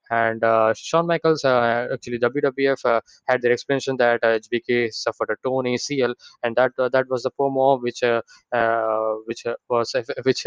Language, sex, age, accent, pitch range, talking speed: English, male, 20-39, Indian, 115-135 Hz, 190 wpm